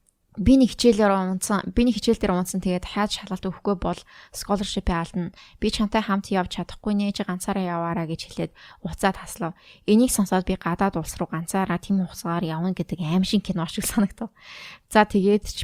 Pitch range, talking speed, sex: 175-205 Hz, 150 wpm, female